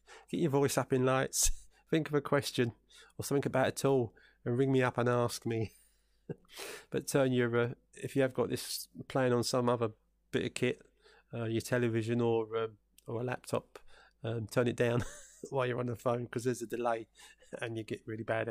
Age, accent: 20-39, British